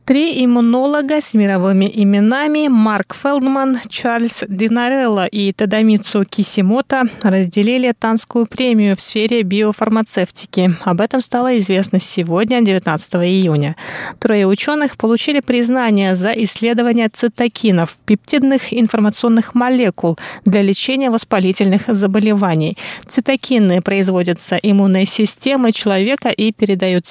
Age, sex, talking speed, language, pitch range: 20-39, female, 100 wpm, Russian, 195-240 Hz